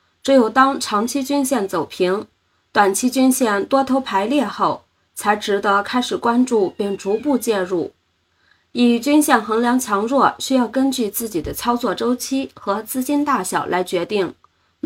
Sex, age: female, 20-39